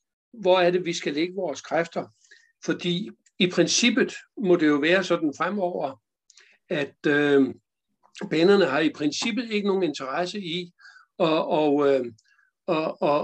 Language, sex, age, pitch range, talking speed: Danish, male, 60-79, 155-200 Hz, 145 wpm